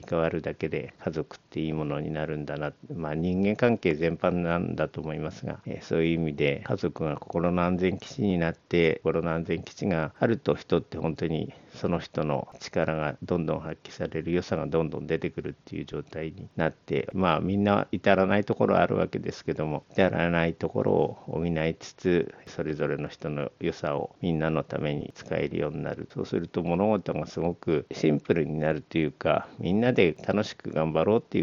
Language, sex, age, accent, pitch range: Japanese, male, 50-69, native, 80-95 Hz